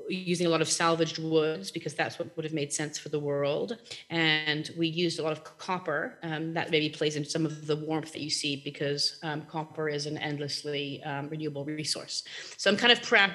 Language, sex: English, female